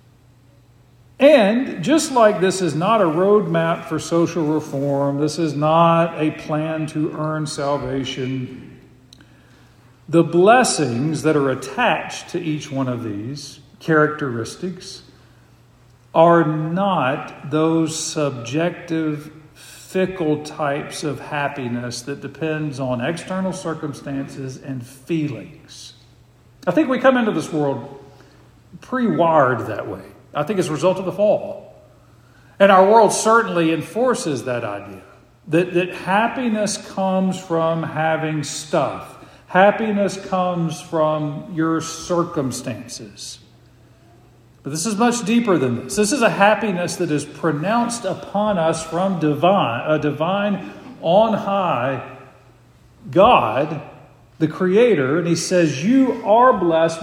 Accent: American